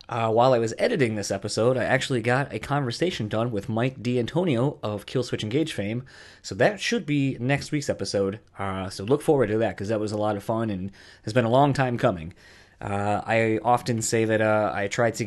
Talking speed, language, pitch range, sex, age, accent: 220 wpm, English, 105-140 Hz, male, 20-39, American